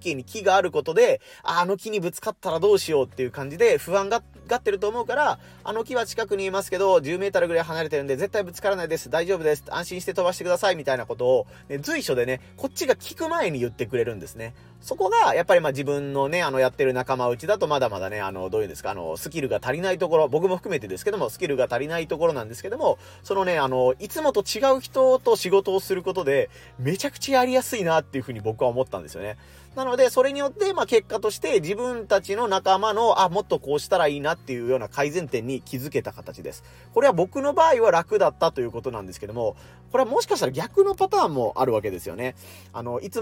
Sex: male